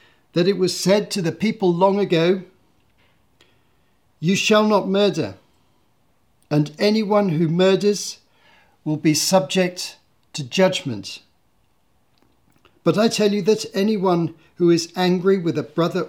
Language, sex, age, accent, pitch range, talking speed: English, male, 50-69, British, 155-195 Hz, 125 wpm